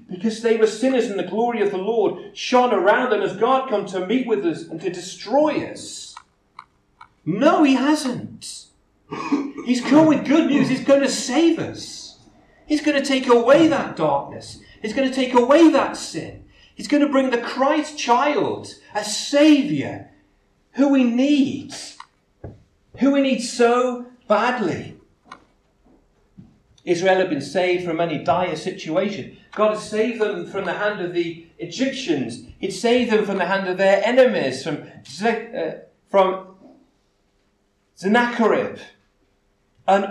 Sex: male